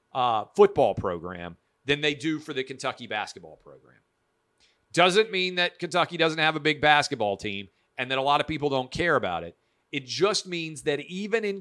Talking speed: 190 wpm